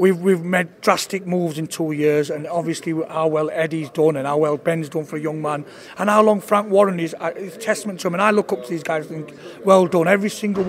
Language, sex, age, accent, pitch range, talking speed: English, male, 40-59, British, 165-200 Hz, 265 wpm